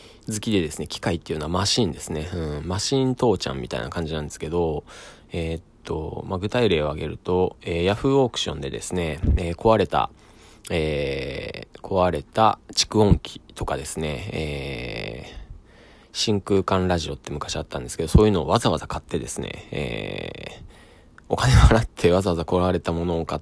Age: 20-39